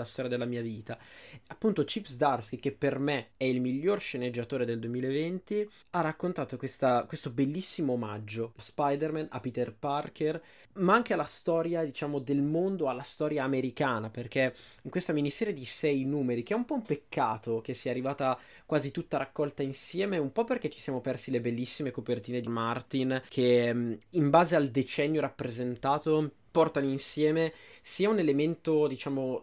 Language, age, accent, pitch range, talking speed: Italian, 20-39, native, 125-150 Hz, 165 wpm